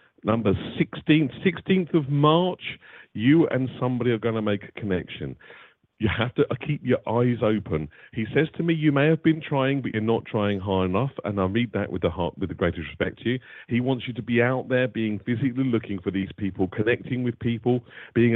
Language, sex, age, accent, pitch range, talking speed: English, male, 40-59, British, 100-140 Hz, 215 wpm